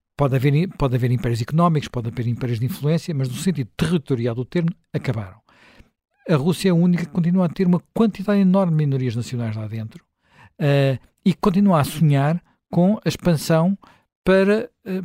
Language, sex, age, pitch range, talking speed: Portuguese, male, 60-79, 135-190 Hz, 180 wpm